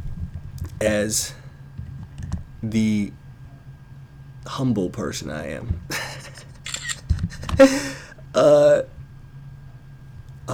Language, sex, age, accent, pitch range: English, male, 20-39, American, 105-135 Hz